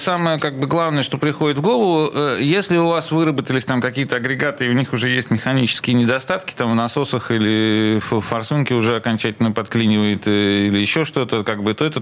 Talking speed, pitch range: 190 wpm, 110-145 Hz